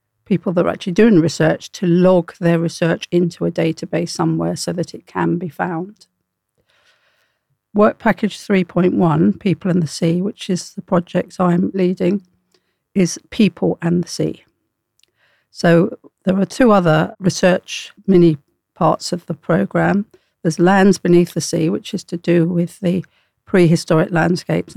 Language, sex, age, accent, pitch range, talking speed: English, female, 50-69, British, 165-185 Hz, 150 wpm